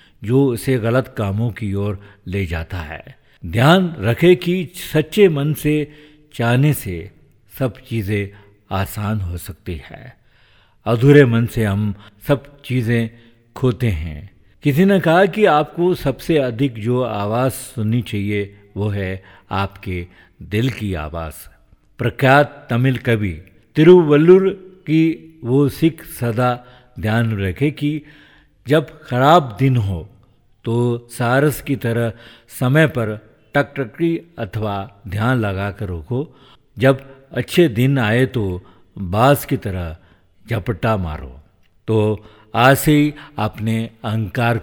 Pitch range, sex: 100-140 Hz, male